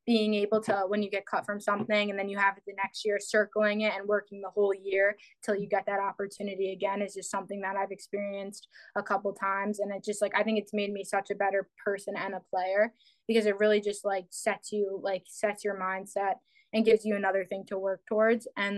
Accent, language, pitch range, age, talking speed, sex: American, English, 195-210 Hz, 20-39, 240 wpm, female